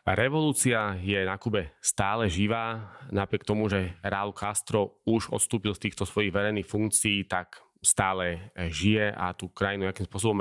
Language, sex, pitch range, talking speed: Slovak, male, 95-110 Hz, 150 wpm